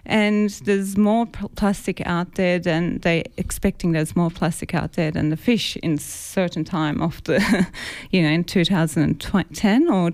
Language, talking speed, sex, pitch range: English, 160 wpm, female, 165-205 Hz